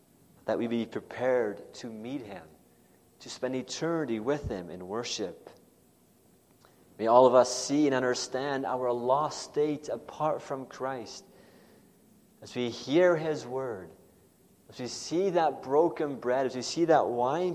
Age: 30-49